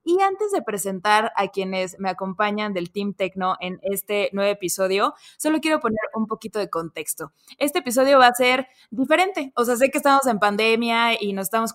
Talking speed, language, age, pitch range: 195 wpm, Spanish, 20-39, 195-245 Hz